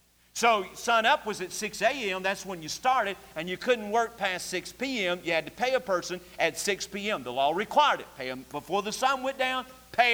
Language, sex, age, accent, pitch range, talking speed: English, male, 50-69, American, 185-255 Hz, 230 wpm